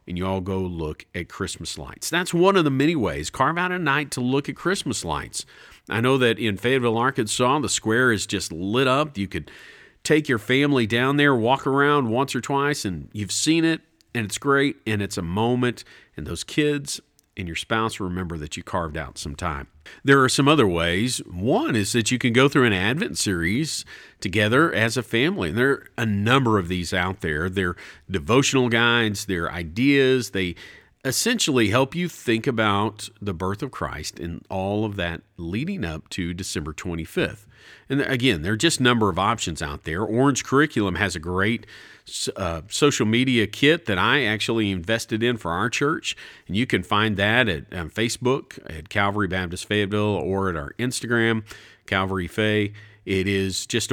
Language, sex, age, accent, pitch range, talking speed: English, male, 50-69, American, 95-130 Hz, 190 wpm